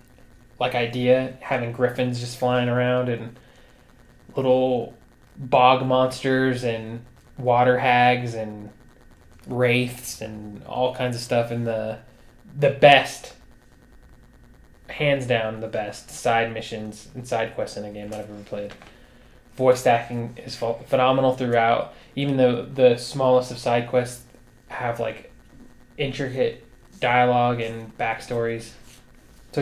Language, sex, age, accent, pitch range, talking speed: English, male, 20-39, American, 120-130 Hz, 125 wpm